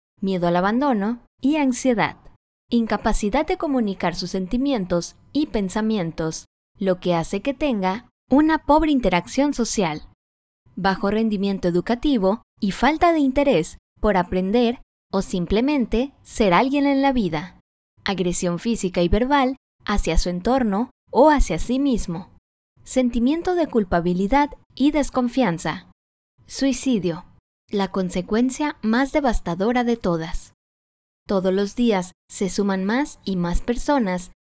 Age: 20-39